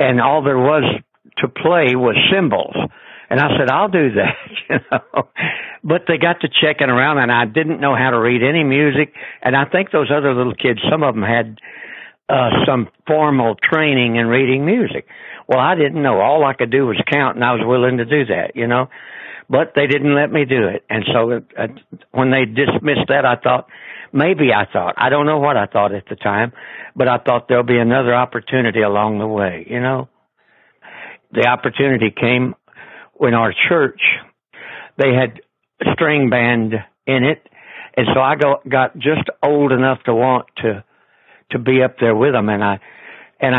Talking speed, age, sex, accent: 195 wpm, 60-79, male, American